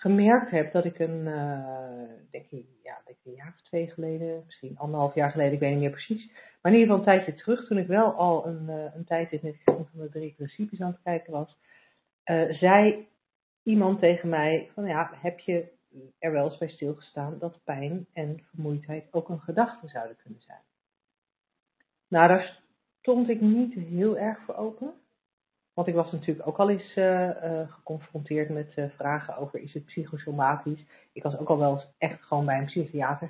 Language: Dutch